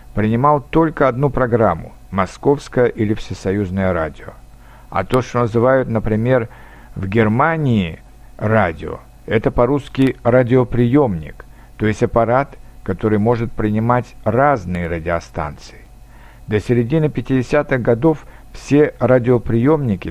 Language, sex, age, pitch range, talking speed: Russian, male, 60-79, 110-130 Hz, 100 wpm